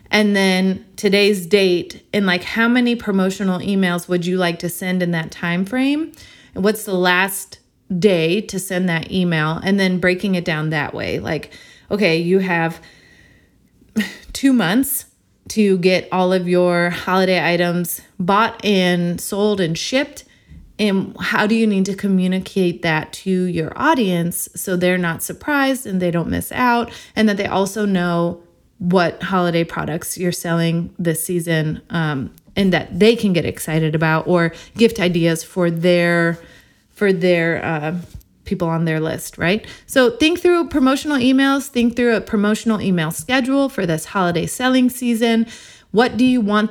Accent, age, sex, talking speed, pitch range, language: American, 30-49, female, 160 wpm, 175-215 Hz, English